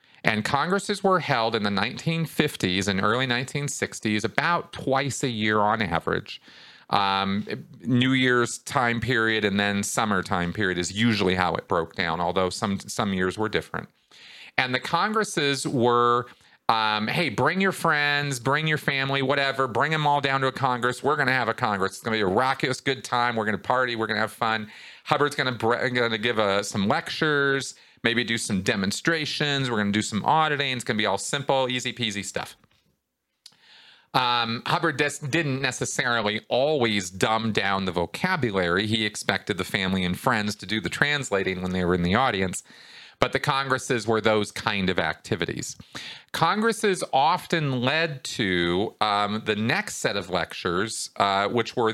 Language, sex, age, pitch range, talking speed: English, male, 40-59, 105-135 Hz, 180 wpm